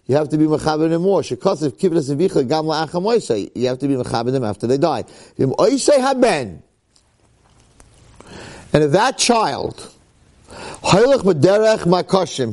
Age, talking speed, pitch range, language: 50-69, 145 wpm, 135-185 Hz, English